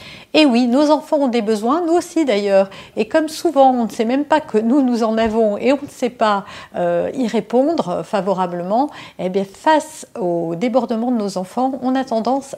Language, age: French, 50-69